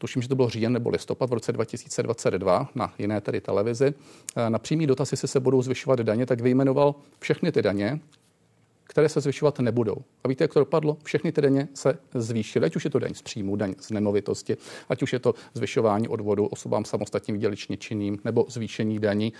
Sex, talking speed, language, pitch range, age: male, 200 wpm, Czech, 110-135 Hz, 40-59